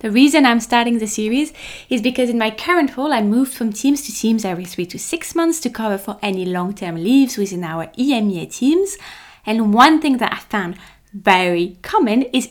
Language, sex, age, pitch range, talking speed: English, female, 20-39, 195-265 Hz, 200 wpm